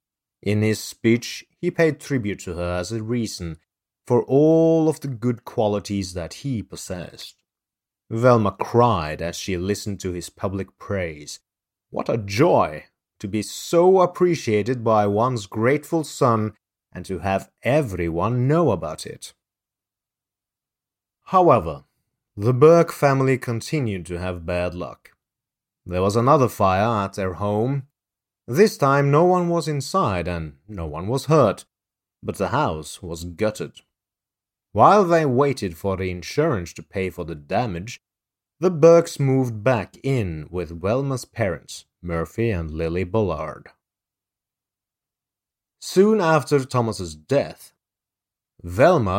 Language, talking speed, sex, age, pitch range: English, 130 wpm, male, 30-49, 95-135 Hz